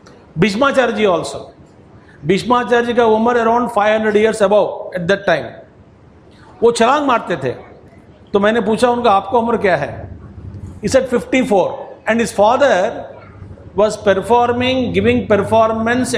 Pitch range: 195-245 Hz